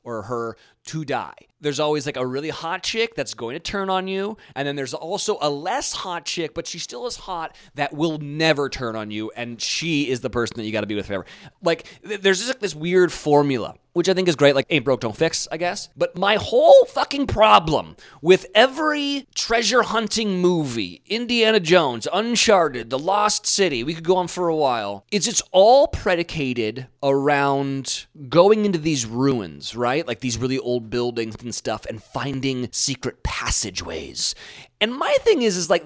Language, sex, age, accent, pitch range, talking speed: English, male, 30-49, American, 140-205 Hz, 195 wpm